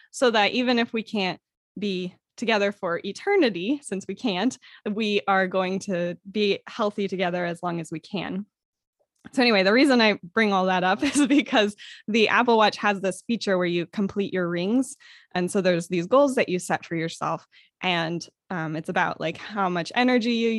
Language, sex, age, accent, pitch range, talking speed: English, female, 20-39, American, 185-225 Hz, 190 wpm